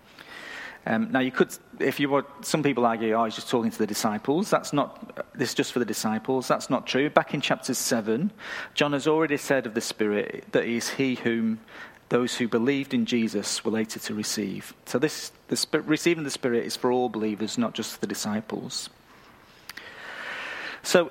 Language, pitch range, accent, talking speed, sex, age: English, 115-155 Hz, British, 190 wpm, male, 40-59